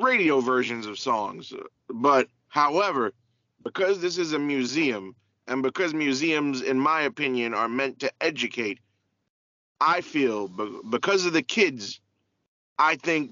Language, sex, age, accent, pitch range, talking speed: English, male, 20-39, American, 115-160 Hz, 130 wpm